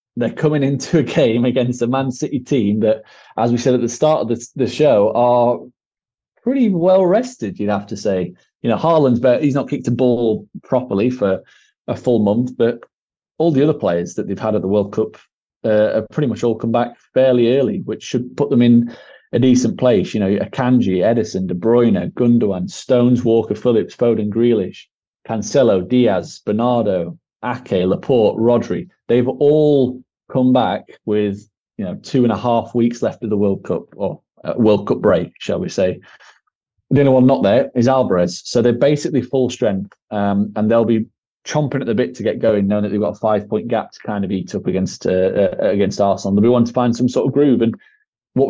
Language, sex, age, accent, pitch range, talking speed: English, male, 30-49, British, 105-130 Hz, 200 wpm